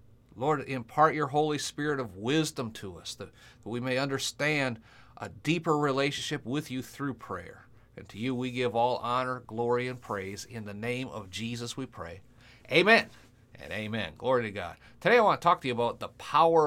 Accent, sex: American, male